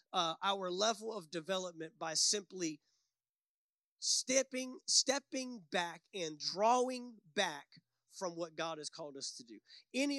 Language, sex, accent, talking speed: English, male, American, 130 wpm